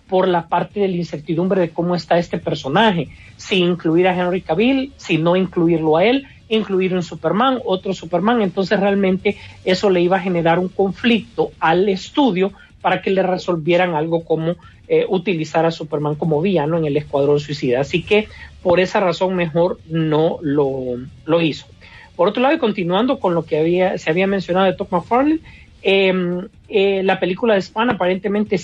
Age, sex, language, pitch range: 40-59, male, Spanish, 170-205 Hz